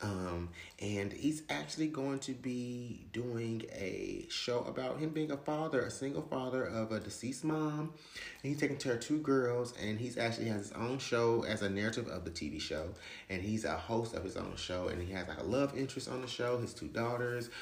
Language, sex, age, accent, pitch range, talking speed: English, male, 30-49, American, 90-120 Hz, 220 wpm